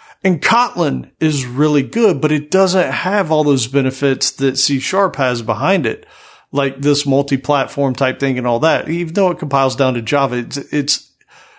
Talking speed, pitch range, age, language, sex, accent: 180 wpm, 130-150 Hz, 40-59, English, male, American